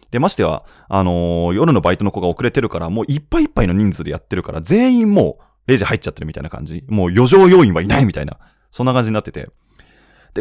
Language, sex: Japanese, male